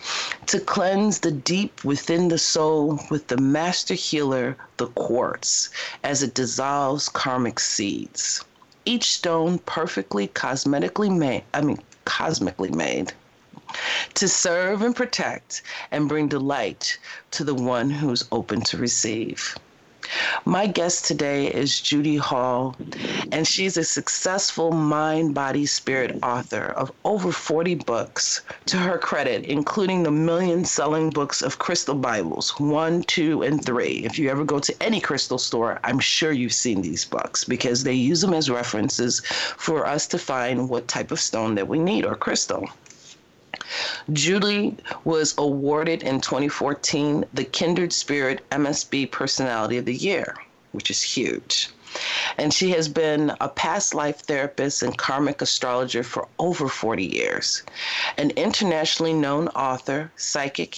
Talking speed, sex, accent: 140 wpm, female, American